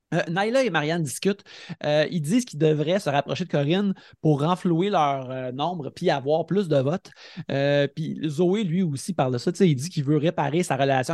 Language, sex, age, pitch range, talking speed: French, male, 30-49, 145-180 Hz, 215 wpm